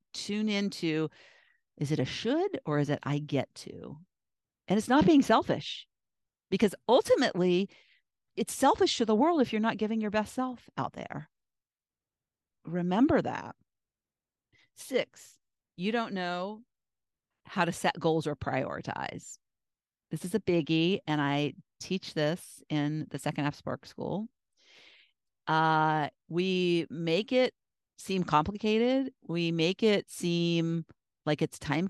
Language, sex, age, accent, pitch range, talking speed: English, female, 40-59, American, 160-225 Hz, 135 wpm